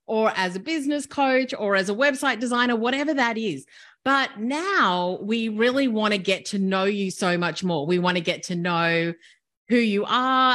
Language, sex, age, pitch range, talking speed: English, female, 30-49, 195-255 Hz, 200 wpm